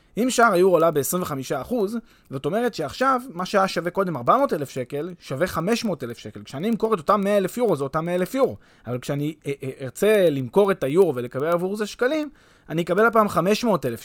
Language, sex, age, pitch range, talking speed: Hebrew, male, 20-39, 140-210 Hz, 175 wpm